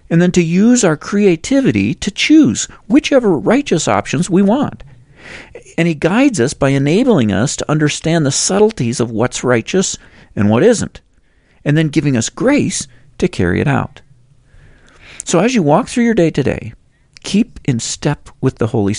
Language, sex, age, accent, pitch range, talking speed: English, male, 50-69, American, 100-155 Hz, 170 wpm